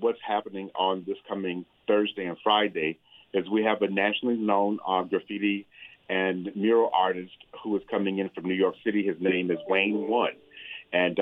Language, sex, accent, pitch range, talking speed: English, male, American, 85-100 Hz, 175 wpm